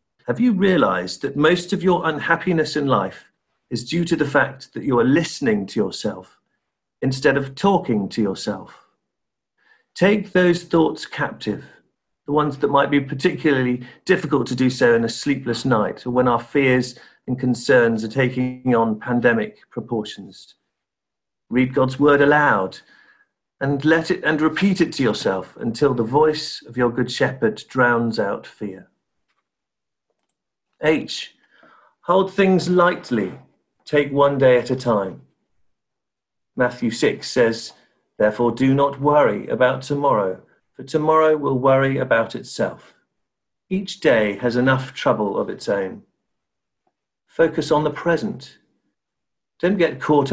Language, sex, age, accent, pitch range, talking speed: English, male, 50-69, British, 120-155 Hz, 140 wpm